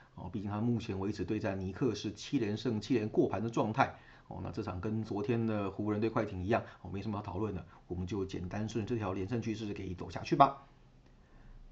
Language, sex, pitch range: Chinese, male, 95-115 Hz